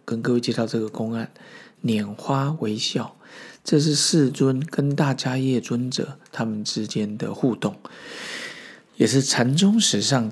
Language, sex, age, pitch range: Chinese, male, 50-69, 115-155 Hz